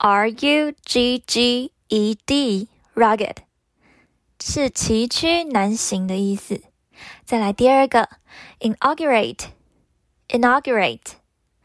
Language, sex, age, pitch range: Chinese, female, 10-29, 215-275 Hz